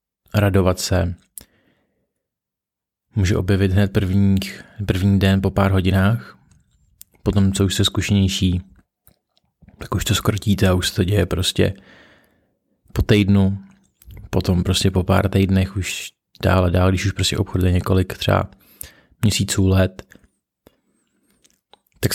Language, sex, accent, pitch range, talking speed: Czech, male, native, 95-105 Hz, 120 wpm